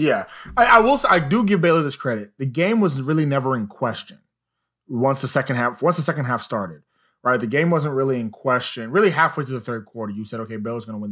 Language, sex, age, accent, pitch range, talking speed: English, male, 20-39, American, 125-170 Hz, 250 wpm